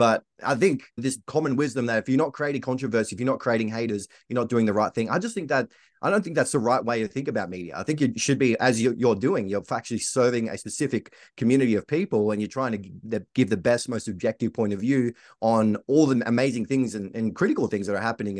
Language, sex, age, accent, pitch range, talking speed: English, male, 30-49, Australian, 105-130 Hz, 255 wpm